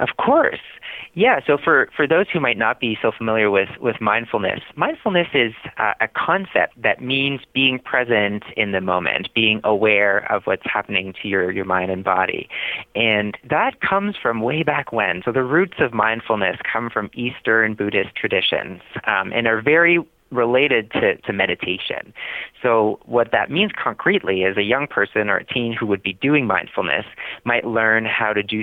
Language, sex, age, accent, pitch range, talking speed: English, male, 30-49, American, 100-130 Hz, 180 wpm